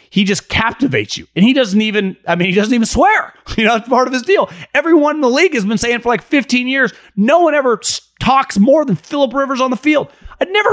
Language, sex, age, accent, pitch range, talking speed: English, male, 30-49, American, 150-210 Hz, 250 wpm